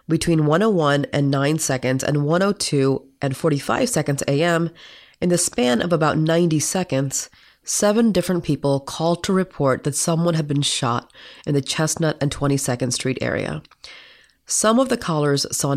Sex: female